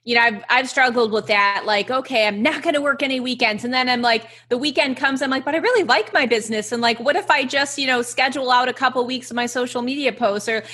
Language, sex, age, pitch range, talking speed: English, female, 30-49, 210-255 Hz, 285 wpm